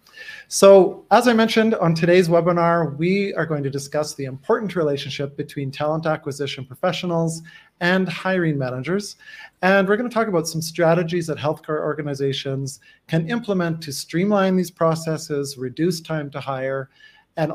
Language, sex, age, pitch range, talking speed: English, male, 40-59, 140-175 Hz, 150 wpm